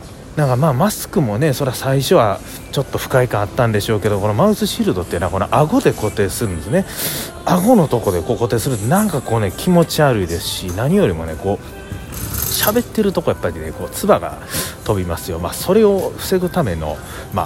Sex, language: male, Japanese